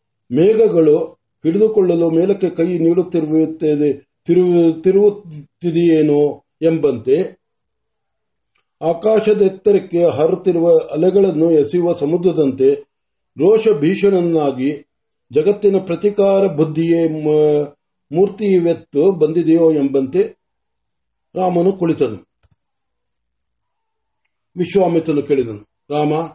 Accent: native